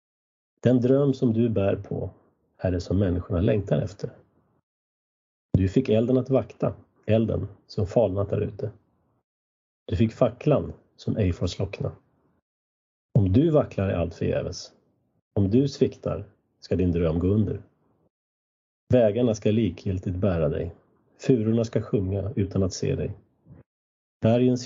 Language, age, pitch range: Swedish, 30-49, 95-115 Hz